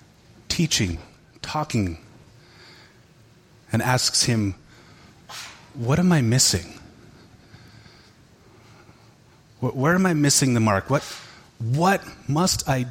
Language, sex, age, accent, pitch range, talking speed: English, male, 30-49, American, 110-140 Hz, 90 wpm